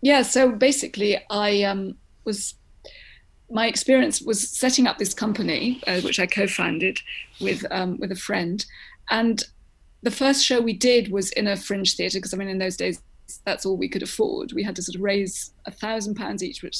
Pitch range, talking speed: 195-235 Hz, 195 wpm